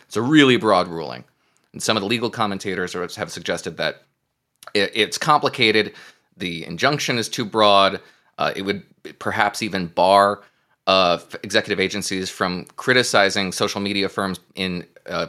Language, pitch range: English, 105-150 Hz